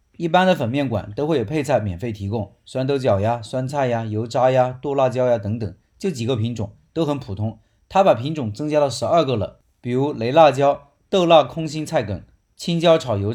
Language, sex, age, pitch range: Chinese, male, 30-49, 105-145 Hz